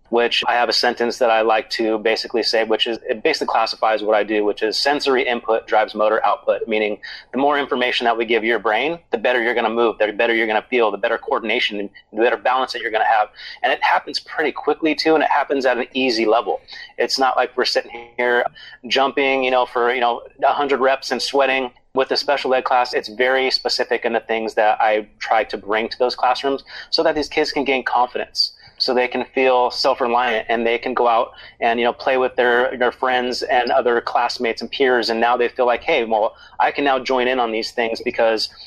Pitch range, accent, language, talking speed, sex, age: 115-130 Hz, American, English, 235 wpm, male, 30-49